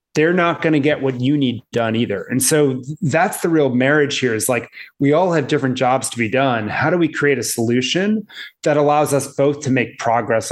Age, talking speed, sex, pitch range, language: 30-49, 225 wpm, male, 120-150 Hz, English